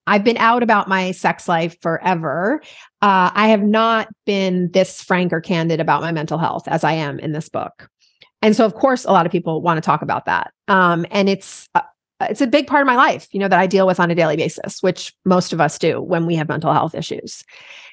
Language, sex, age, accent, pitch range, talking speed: English, female, 30-49, American, 175-220 Hz, 240 wpm